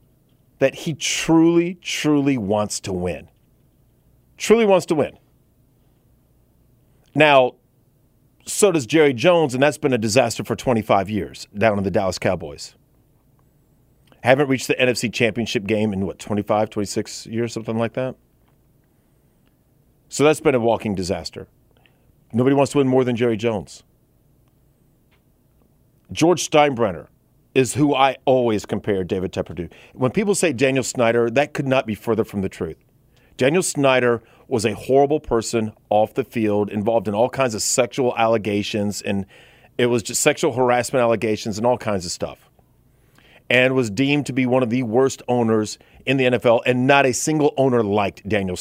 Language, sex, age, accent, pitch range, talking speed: English, male, 40-59, American, 110-140 Hz, 160 wpm